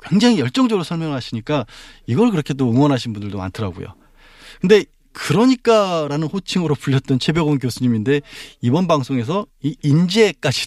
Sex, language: male, Korean